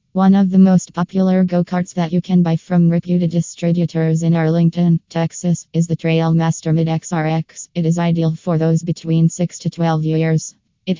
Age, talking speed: 20-39, 170 wpm